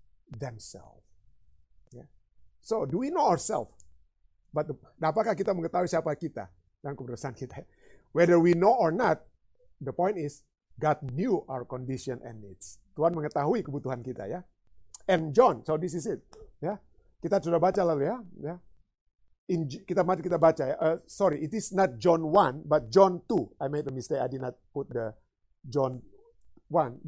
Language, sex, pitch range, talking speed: Indonesian, male, 140-205 Hz, 170 wpm